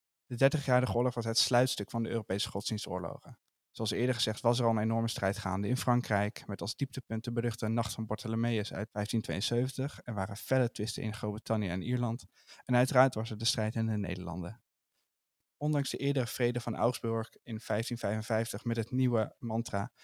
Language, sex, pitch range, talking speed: Dutch, male, 110-125 Hz, 185 wpm